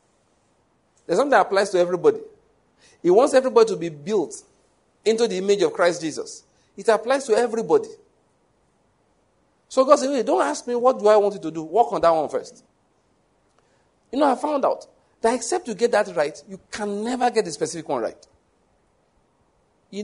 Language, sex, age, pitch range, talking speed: English, male, 50-69, 160-260 Hz, 185 wpm